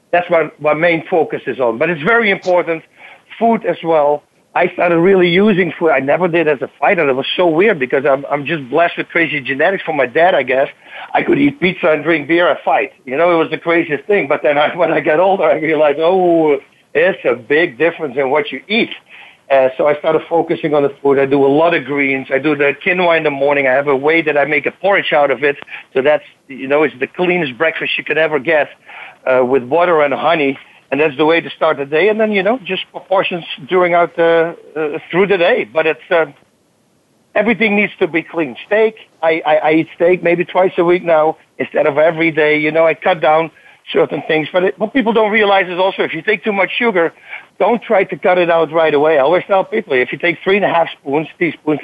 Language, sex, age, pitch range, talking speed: English, male, 50-69, 150-185 Hz, 245 wpm